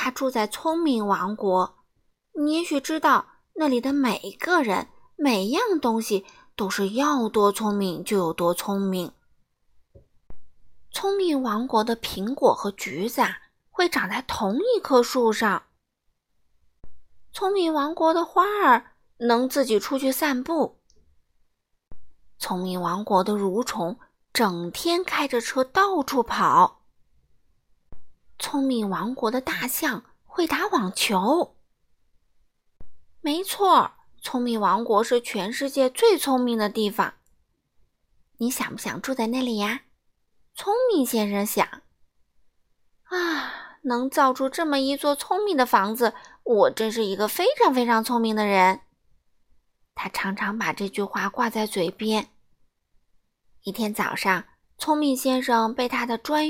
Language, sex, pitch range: Chinese, female, 205-300 Hz